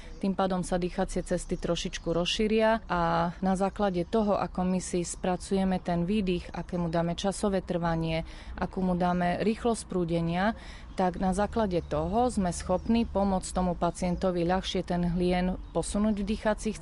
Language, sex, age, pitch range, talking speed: Slovak, female, 30-49, 170-190 Hz, 150 wpm